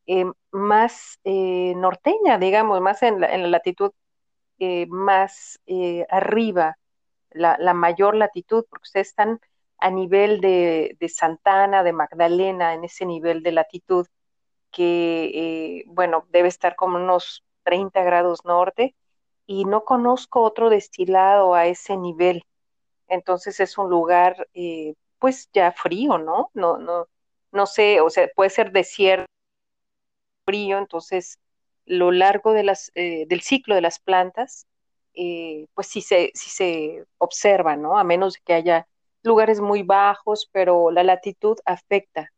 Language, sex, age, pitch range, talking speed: Spanish, female, 40-59, 175-215 Hz, 145 wpm